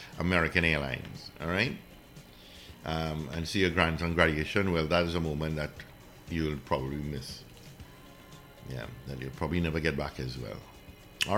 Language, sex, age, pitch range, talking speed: English, male, 60-79, 75-115 Hz, 155 wpm